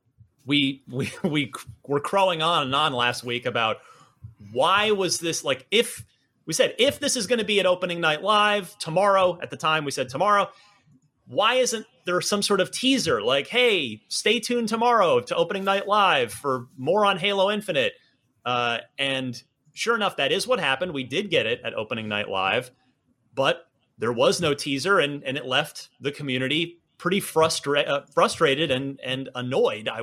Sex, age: male, 30-49